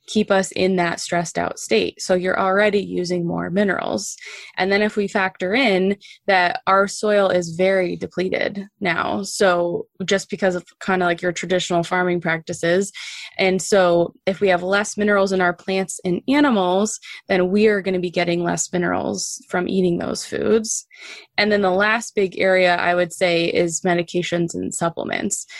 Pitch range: 175-200 Hz